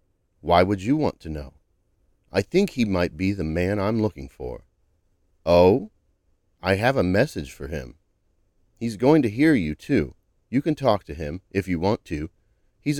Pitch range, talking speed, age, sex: 85-110 Hz, 180 wpm, 40-59, male